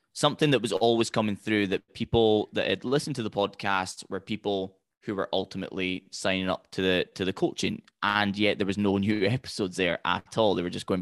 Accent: British